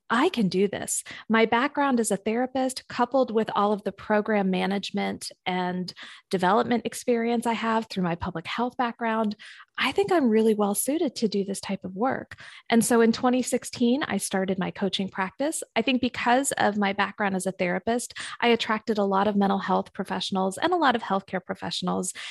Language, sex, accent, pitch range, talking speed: English, female, American, 190-240 Hz, 190 wpm